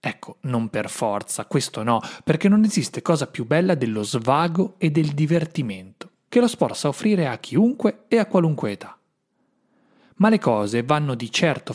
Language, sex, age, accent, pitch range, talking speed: Italian, male, 30-49, native, 125-200 Hz, 175 wpm